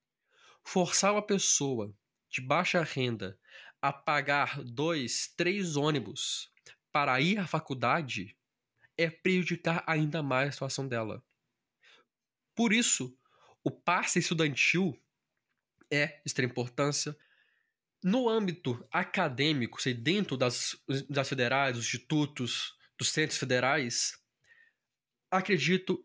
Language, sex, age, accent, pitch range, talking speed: Portuguese, male, 20-39, Brazilian, 130-175 Hz, 100 wpm